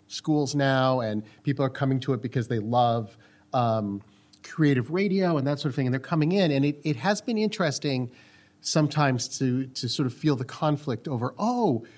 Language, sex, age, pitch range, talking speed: English, male, 40-59, 125-160 Hz, 195 wpm